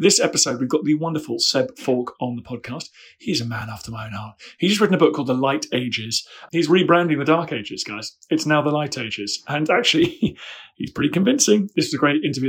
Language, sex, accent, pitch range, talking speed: English, male, British, 120-150 Hz, 230 wpm